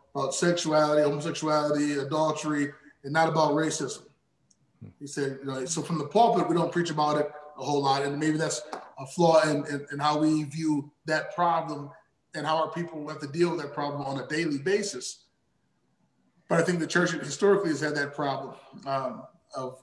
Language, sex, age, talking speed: English, male, 20-39, 185 wpm